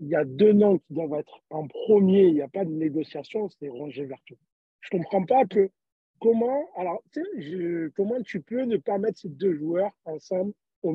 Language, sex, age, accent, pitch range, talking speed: French, male, 50-69, French, 160-210 Hz, 215 wpm